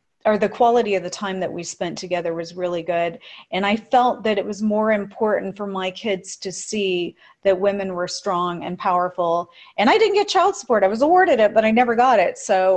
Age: 40-59